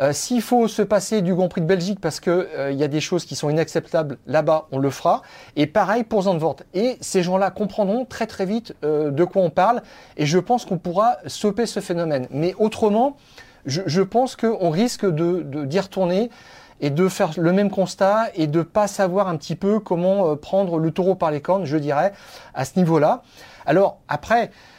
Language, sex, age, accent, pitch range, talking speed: French, male, 40-59, French, 140-190 Hz, 205 wpm